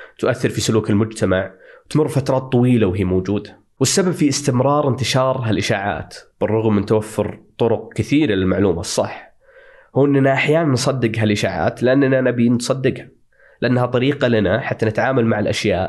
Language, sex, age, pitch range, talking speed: Arabic, male, 20-39, 110-140 Hz, 135 wpm